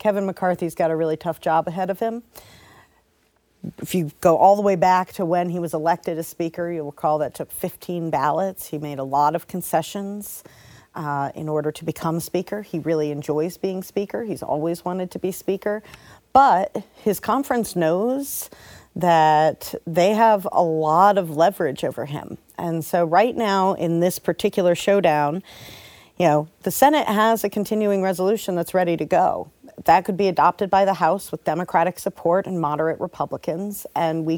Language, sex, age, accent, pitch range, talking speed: English, female, 40-59, American, 160-195 Hz, 175 wpm